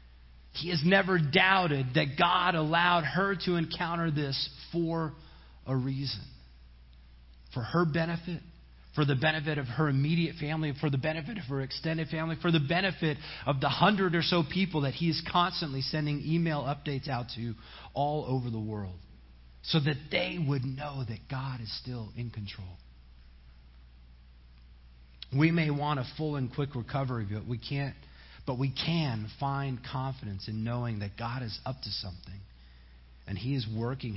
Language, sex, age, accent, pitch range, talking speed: English, male, 40-59, American, 90-150 Hz, 160 wpm